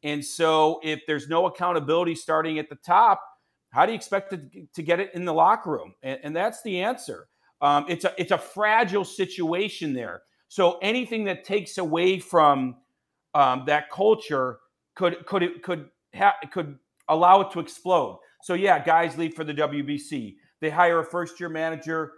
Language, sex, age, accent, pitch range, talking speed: English, male, 40-59, American, 145-185 Hz, 180 wpm